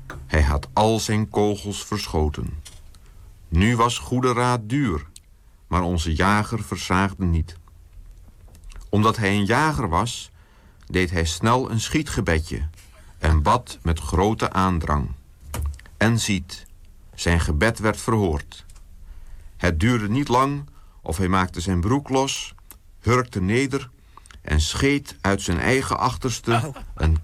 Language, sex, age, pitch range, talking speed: Dutch, male, 50-69, 85-115 Hz, 125 wpm